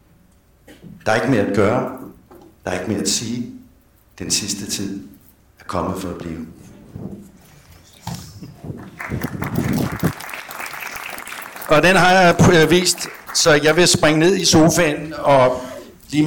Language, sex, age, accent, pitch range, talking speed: Danish, male, 60-79, native, 100-145 Hz, 125 wpm